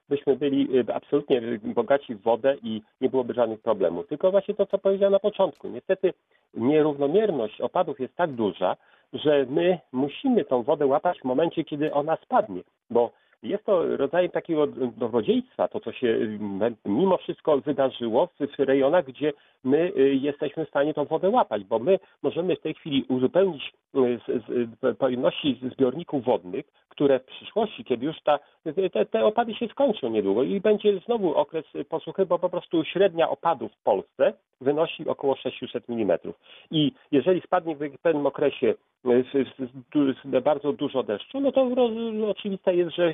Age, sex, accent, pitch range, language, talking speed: 40-59, male, native, 135-180 Hz, Polish, 160 wpm